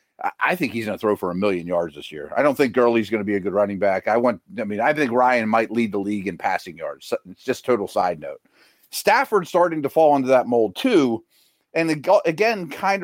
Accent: American